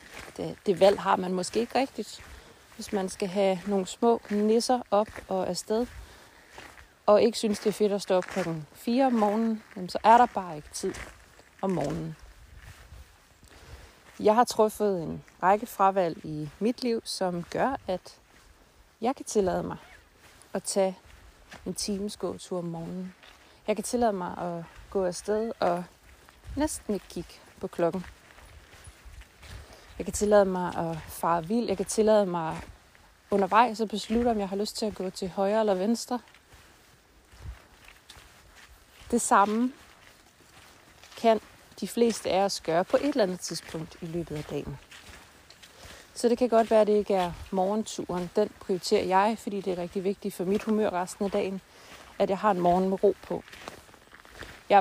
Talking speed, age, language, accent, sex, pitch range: 165 wpm, 30-49, Danish, native, female, 175-215 Hz